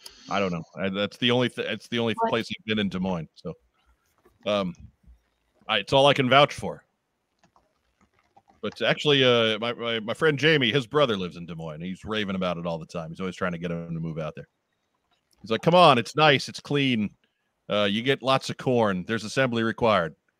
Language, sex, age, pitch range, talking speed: English, male, 40-59, 105-135 Hz, 220 wpm